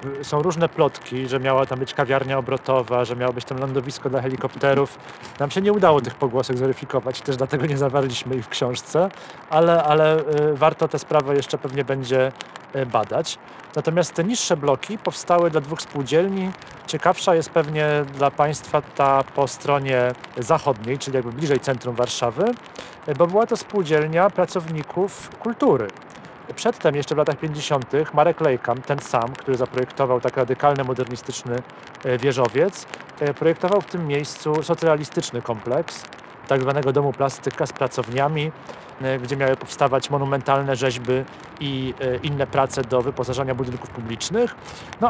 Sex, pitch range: male, 135-160 Hz